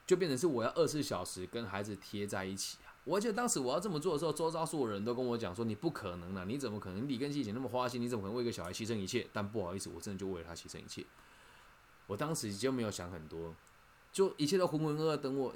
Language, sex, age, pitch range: Chinese, male, 20-39, 100-140 Hz